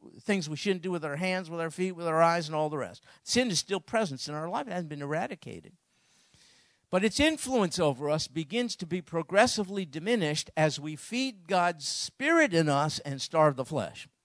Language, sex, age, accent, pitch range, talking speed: English, male, 50-69, American, 150-195 Hz, 205 wpm